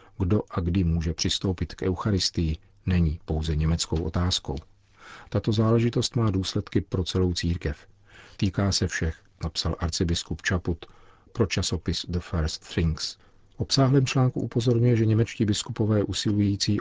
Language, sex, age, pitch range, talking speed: Czech, male, 40-59, 90-100 Hz, 130 wpm